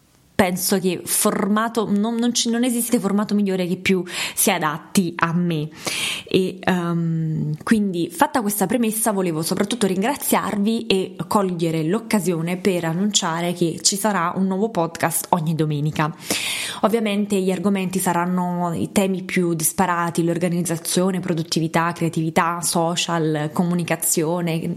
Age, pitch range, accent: 20-39, 170-205 Hz, native